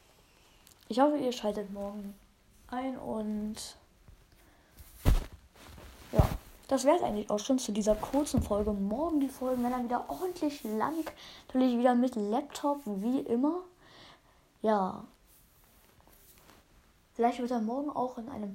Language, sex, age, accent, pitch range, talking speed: German, female, 10-29, German, 205-260 Hz, 125 wpm